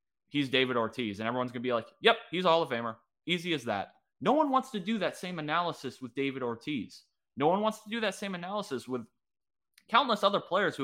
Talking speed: 230 wpm